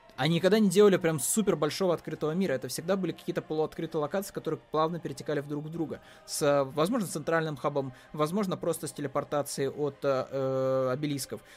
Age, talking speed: 20-39, 170 wpm